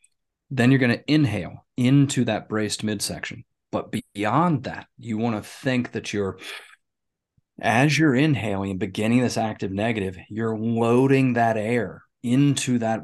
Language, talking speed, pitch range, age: English, 145 wpm, 100-125 Hz, 30-49